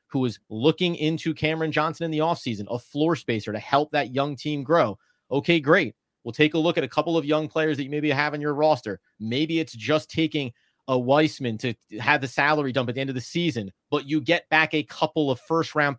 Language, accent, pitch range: English, American, 130-170 Hz